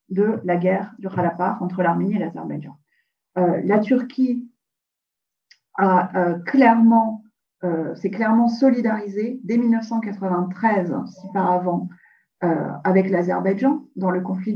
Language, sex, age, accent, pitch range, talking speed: French, female, 40-59, French, 180-220 Hz, 125 wpm